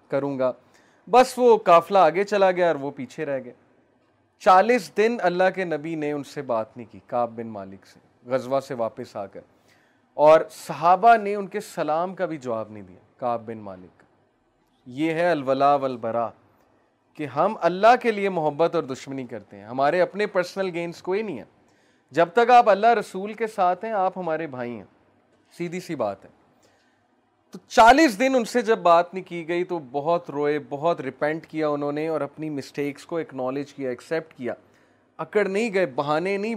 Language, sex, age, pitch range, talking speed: Urdu, male, 30-49, 145-180 Hz, 190 wpm